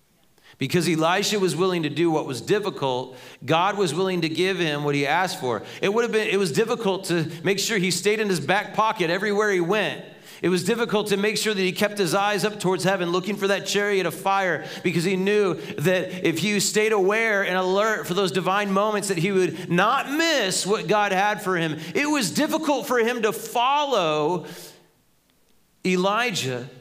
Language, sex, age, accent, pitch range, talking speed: English, male, 30-49, American, 125-195 Hz, 195 wpm